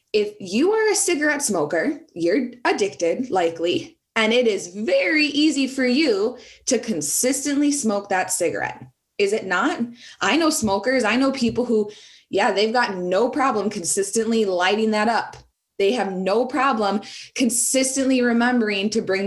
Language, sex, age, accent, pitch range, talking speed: English, female, 20-39, American, 190-255 Hz, 150 wpm